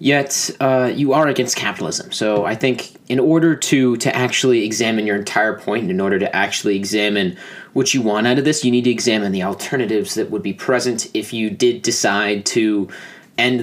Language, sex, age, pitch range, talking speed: English, male, 20-39, 110-145 Hz, 200 wpm